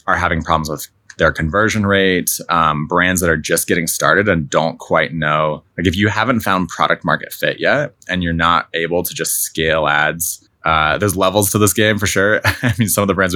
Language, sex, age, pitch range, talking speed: English, male, 20-39, 80-95 Hz, 220 wpm